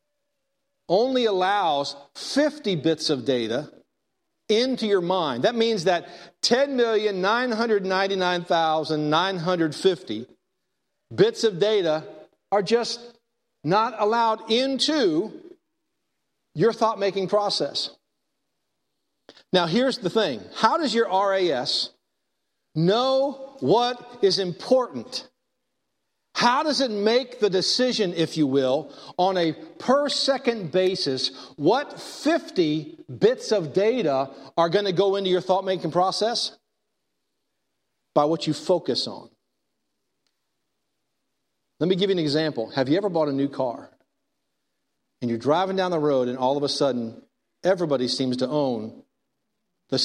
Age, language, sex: 50-69, English, male